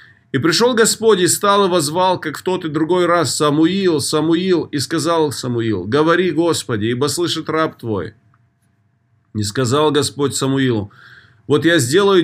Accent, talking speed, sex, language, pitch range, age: native, 150 wpm, male, Russian, 130-165 Hz, 30-49